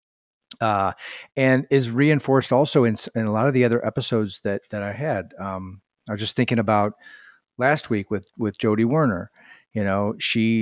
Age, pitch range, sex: 40-59, 105-125 Hz, male